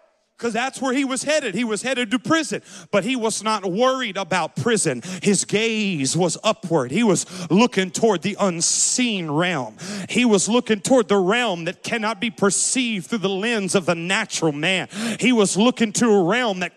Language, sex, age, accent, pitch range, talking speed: English, male, 40-59, American, 160-220 Hz, 190 wpm